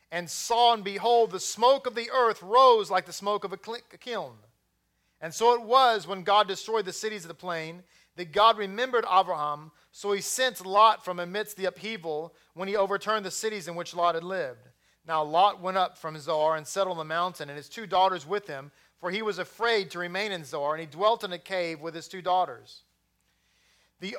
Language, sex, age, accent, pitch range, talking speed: English, male, 40-59, American, 165-210 Hz, 215 wpm